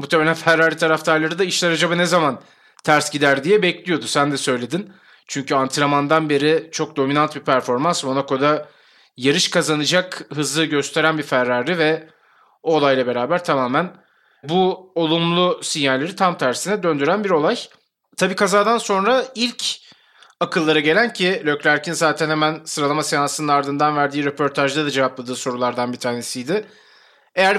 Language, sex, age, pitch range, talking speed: Turkish, male, 30-49, 145-185 Hz, 135 wpm